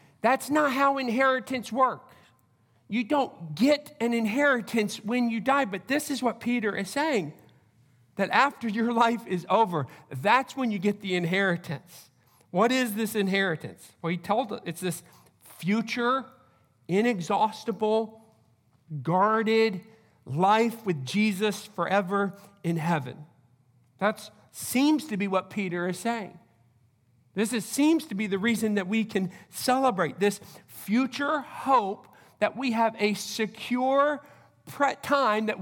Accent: American